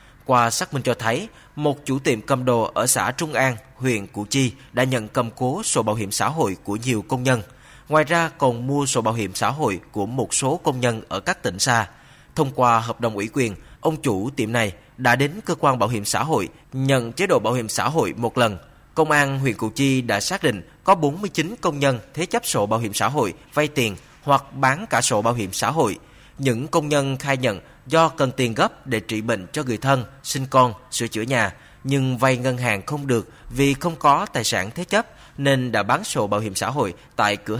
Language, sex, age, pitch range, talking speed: Vietnamese, male, 20-39, 115-145 Hz, 235 wpm